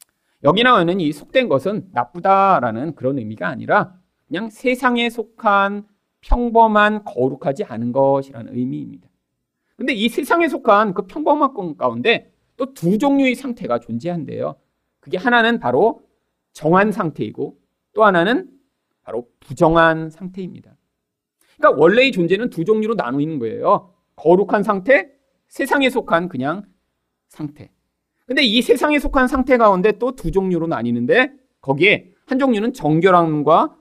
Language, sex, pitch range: Korean, male, 150-250 Hz